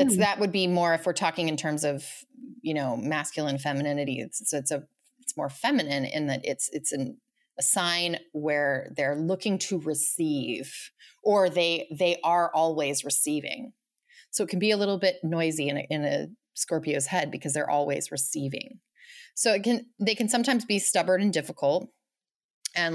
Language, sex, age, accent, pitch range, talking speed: English, female, 30-49, American, 145-185 Hz, 180 wpm